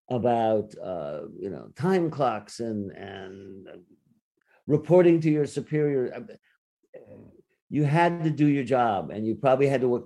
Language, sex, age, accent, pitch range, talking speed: English, male, 50-69, American, 110-150 Hz, 145 wpm